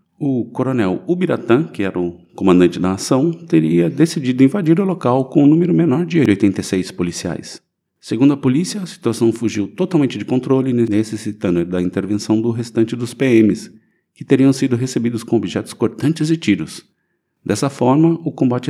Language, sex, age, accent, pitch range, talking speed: Portuguese, male, 50-69, Brazilian, 100-130 Hz, 160 wpm